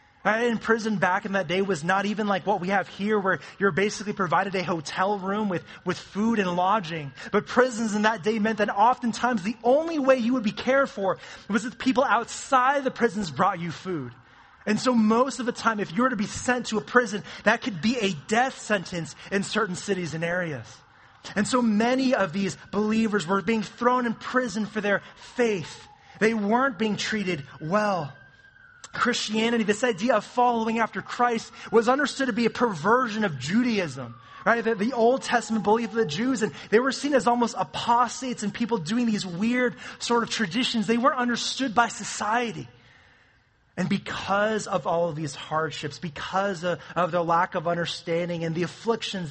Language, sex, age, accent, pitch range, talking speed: English, male, 20-39, American, 170-235 Hz, 190 wpm